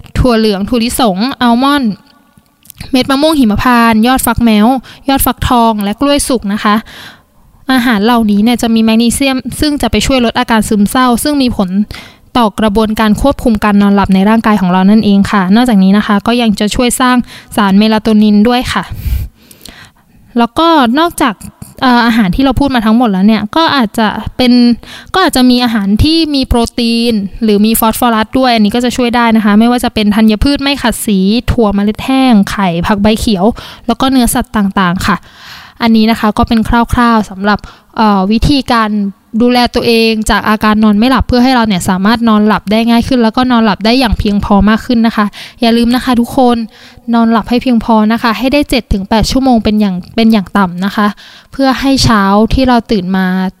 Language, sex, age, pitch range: Thai, female, 20-39, 210-245 Hz